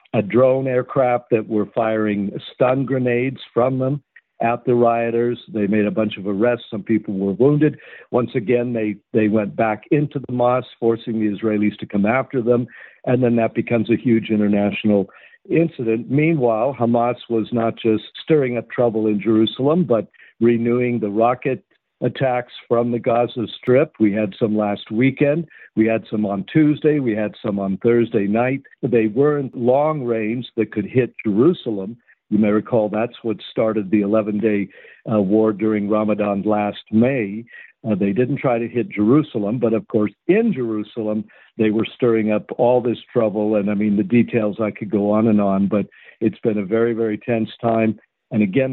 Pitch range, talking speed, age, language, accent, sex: 105-125 Hz, 175 wpm, 60-79, English, American, male